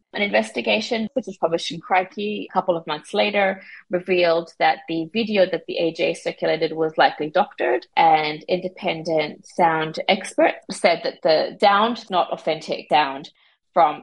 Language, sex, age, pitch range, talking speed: English, female, 30-49, 165-205 Hz, 150 wpm